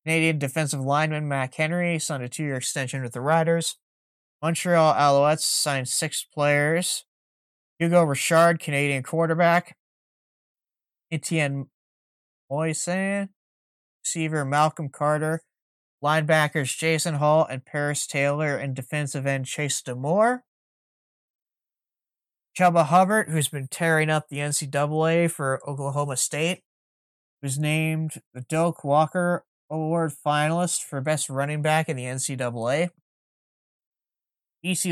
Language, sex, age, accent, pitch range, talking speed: English, male, 30-49, American, 135-165 Hz, 110 wpm